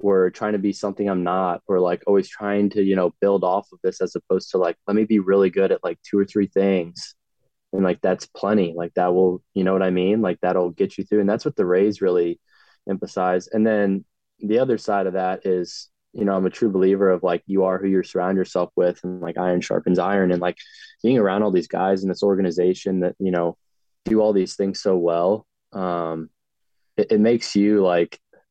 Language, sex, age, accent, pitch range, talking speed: English, male, 20-39, American, 85-95 Hz, 230 wpm